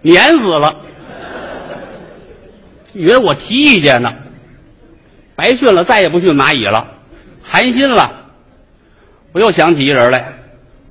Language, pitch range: Chinese, 120-160 Hz